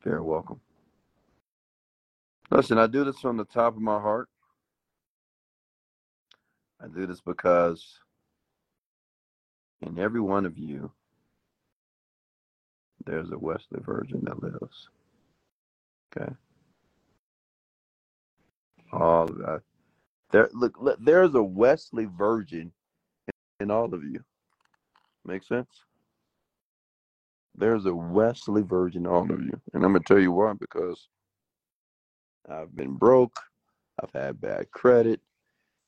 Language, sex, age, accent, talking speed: English, male, 40-59, American, 110 wpm